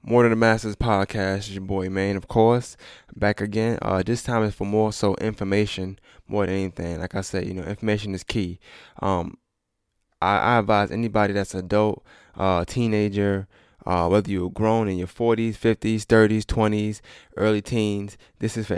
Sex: male